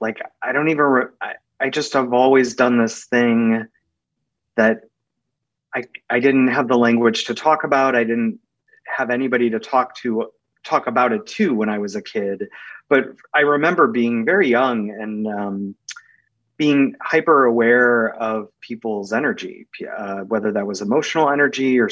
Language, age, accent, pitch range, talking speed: English, 30-49, American, 115-145 Hz, 165 wpm